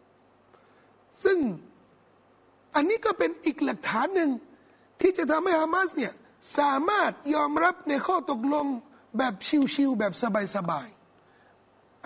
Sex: male